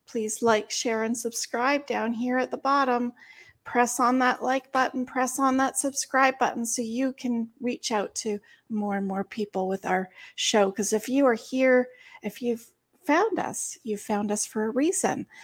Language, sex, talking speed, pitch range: English, female, 185 wpm, 215-275 Hz